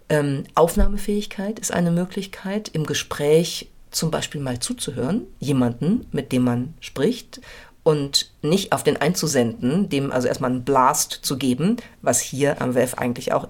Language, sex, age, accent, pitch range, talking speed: German, female, 50-69, German, 140-175 Hz, 150 wpm